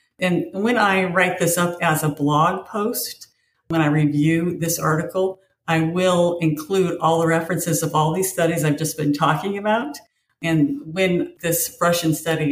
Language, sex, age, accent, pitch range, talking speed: English, female, 50-69, American, 155-190 Hz, 170 wpm